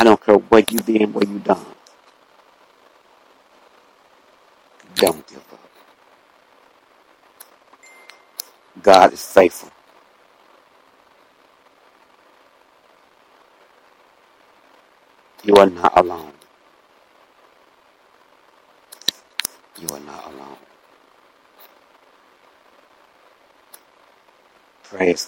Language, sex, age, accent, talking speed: English, male, 60-79, American, 55 wpm